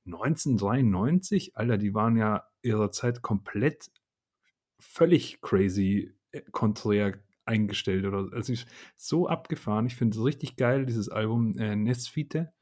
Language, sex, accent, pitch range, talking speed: German, male, German, 105-120 Hz, 125 wpm